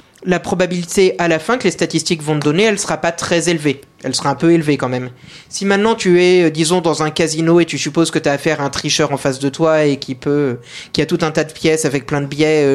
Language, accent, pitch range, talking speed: French, French, 160-200 Hz, 280 wpm